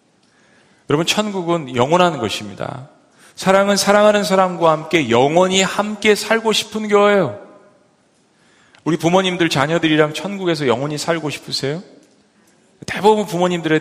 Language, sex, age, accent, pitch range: Korean, male, 40-59, native, 140-195 Hz